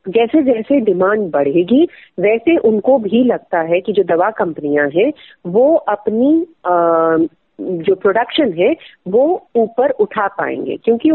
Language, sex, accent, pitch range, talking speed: Hindi, female, native, 195-290 Hz, 130 wpm